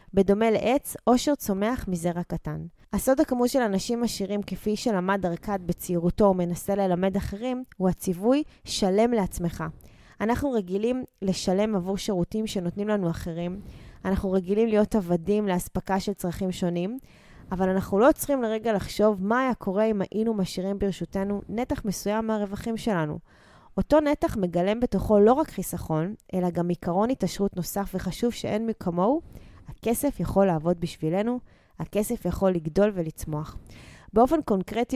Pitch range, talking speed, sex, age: 175-220 Hz, 135 wpm, female, 20-39